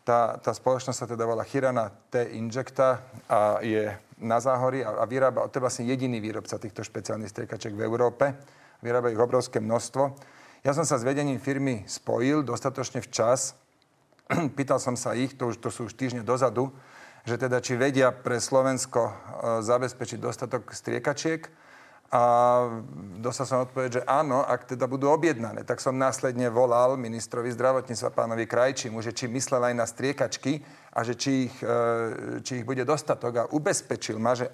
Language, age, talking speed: Slovak, 40-59, 165 wpm